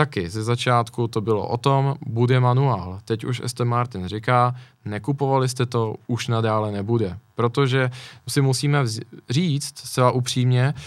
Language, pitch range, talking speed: Czech, 110-130 Hz, 145 wpm